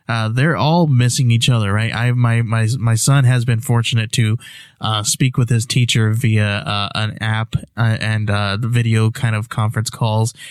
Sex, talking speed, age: male, 195 wpm, 20-39